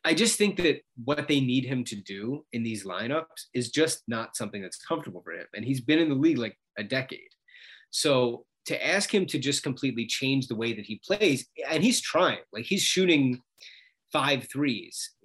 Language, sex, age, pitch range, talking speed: English, male, 30-49, 115-155 Hz, 200 wpm